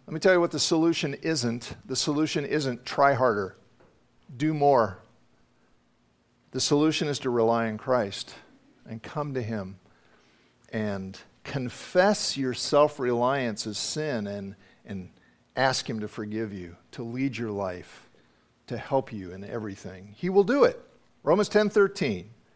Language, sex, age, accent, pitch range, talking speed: English, male, 50-69, American, 105-150 Hz, 145 wpm